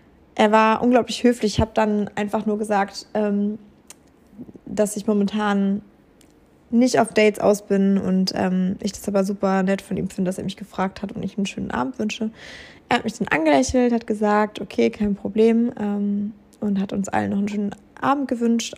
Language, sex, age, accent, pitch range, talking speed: German, female, 20-39, German, 205-230 Hz, 195 wpm